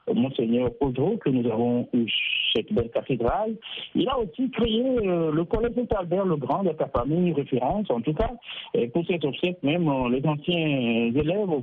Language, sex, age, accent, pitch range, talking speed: French, male, 60-79, French, 125-175 Hz, 170 wpm